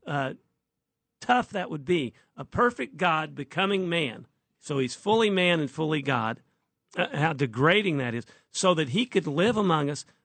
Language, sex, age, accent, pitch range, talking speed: English, male, 50-69, American, 140-175 Hz, 170 wpm